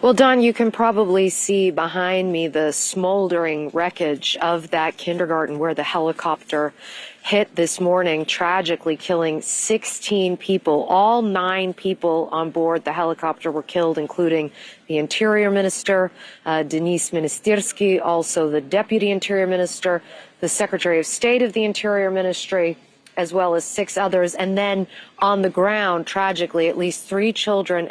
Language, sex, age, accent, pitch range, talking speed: English, female, 40-59, American, 170-200 Hz, 145 wpm